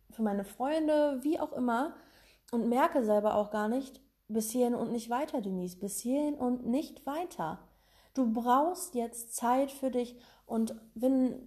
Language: German